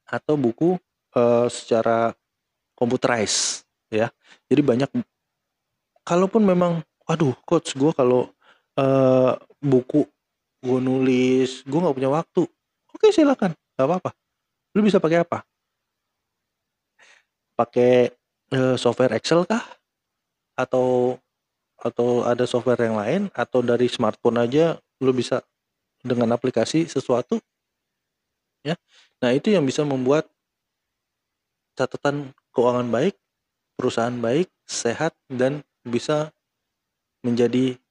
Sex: male